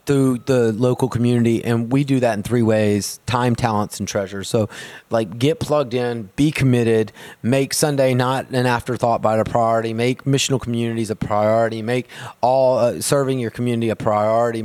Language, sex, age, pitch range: English, male, 30-49, 110-125 Hz